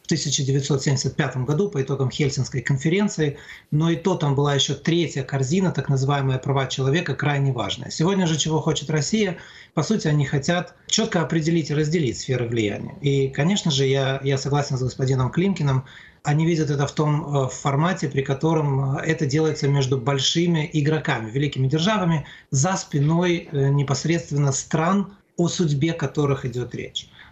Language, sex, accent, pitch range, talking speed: Russian, male, native, 135-160 Hz, 150 wpm